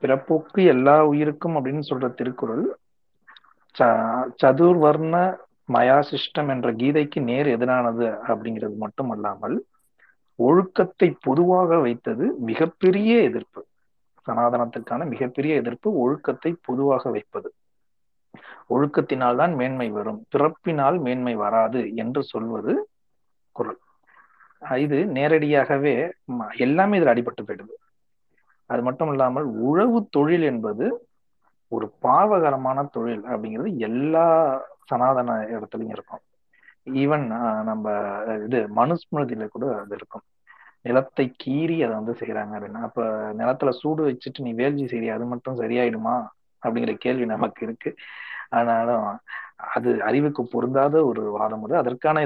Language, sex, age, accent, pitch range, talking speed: Tamil, male, 40-59, native, 120-160 Hz, 100 wpm